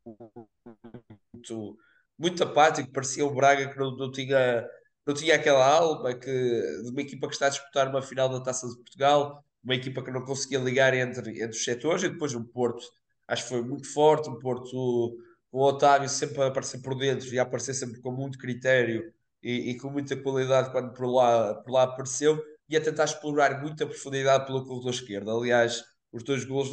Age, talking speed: 20-39, 195 wpm